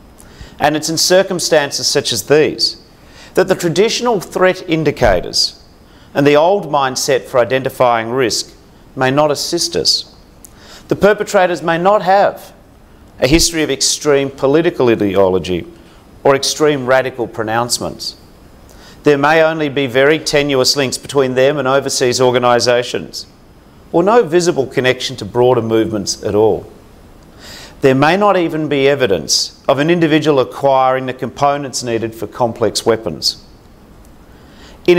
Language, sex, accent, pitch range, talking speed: English, male, Australian, 125-160 Hz, 130 wpm